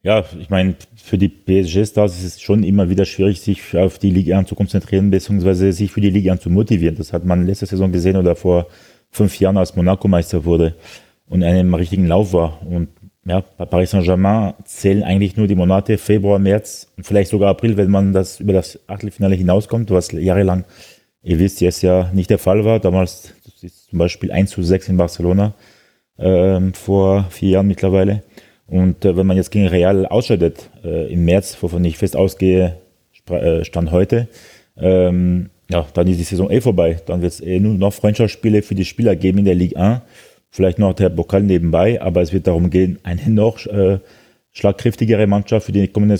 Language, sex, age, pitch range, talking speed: German, male, 30-49, 90-100 Hz, 195 wpm